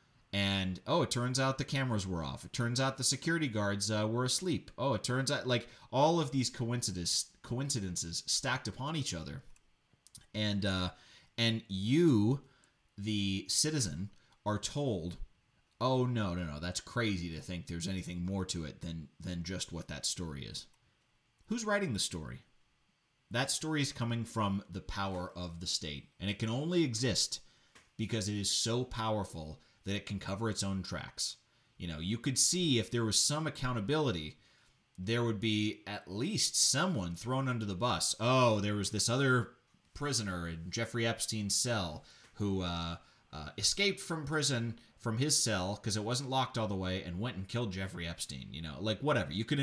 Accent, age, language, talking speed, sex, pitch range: American, 30-49, English, 180 wpm, male, 95-125 Hz